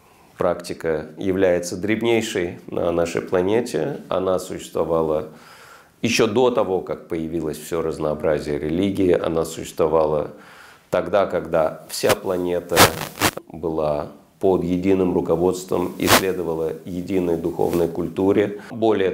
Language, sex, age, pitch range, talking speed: Russian, male, 40-59, 80-100 Hz, 95 wpm